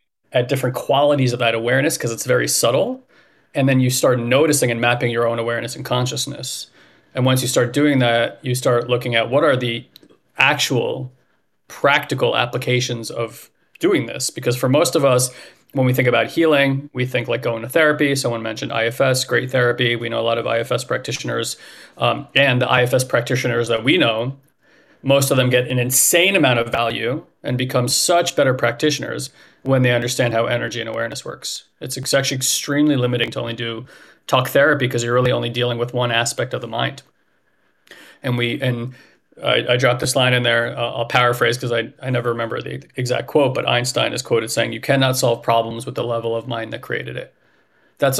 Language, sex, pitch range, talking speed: English, male, 120-135 Hz, 195 wpm